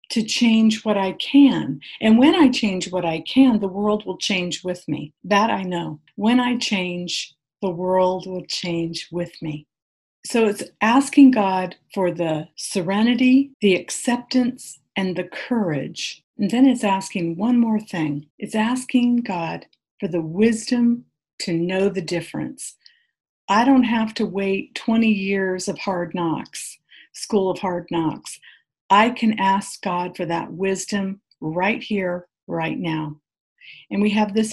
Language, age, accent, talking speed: English, 50-69, American, 155 wpm